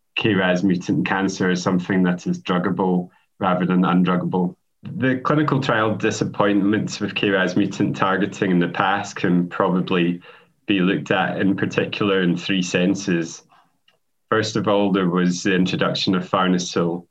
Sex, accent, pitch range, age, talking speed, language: male, British, 90-100 Hz, 20-39, 145 wpm, English